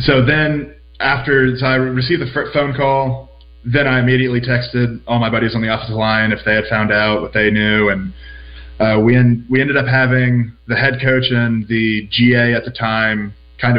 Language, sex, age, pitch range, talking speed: English, male, 20-39, 105-125 Hz, 200 wpm